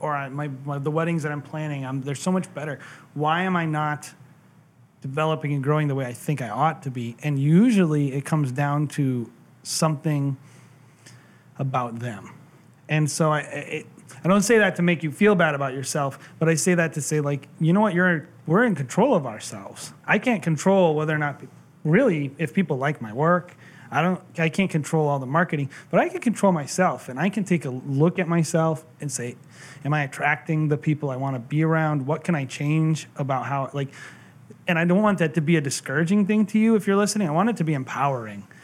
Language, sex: English, male